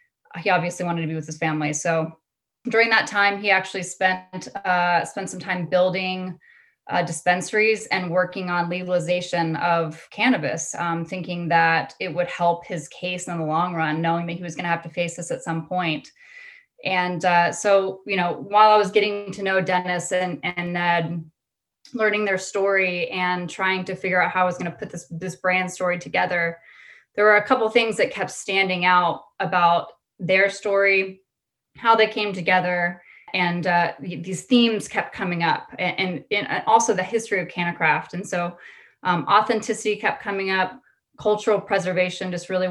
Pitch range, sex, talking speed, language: 170-195 Hz, female, 180 wpm, English